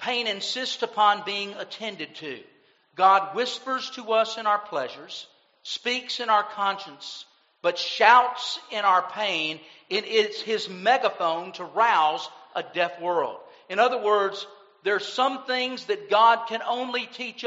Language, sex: English, male